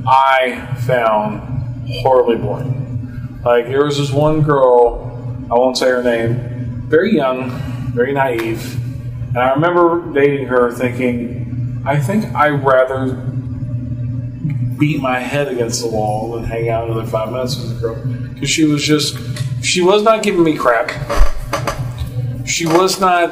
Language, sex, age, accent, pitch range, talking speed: English, male, 40-59, American, 125-145 Hz, 145 wpm